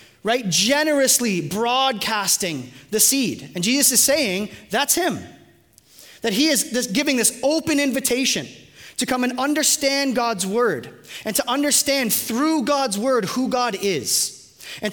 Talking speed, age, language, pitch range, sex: 135 wpm, 30-49, English, 225-285 Hz, male